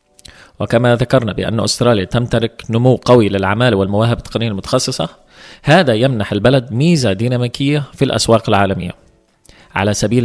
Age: 20-39